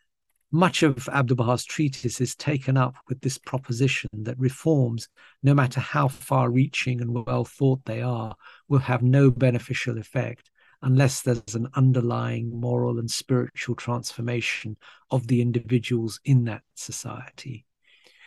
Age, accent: 50-69, British